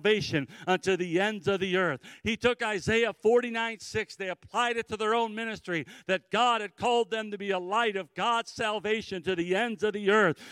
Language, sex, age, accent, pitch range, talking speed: English, male, 50-69, American, 195-225 Hz, 205 wpm